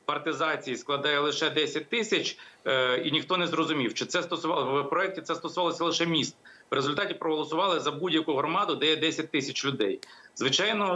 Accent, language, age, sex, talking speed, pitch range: native, Ukrainian, 40-59, male, 165 wpm, 150-195 Hz